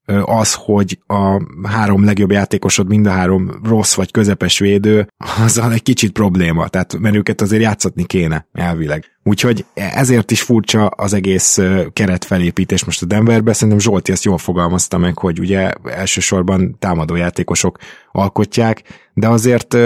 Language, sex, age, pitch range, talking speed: Hungarian, male, 20-39, 90-105 Hz, 145 wpm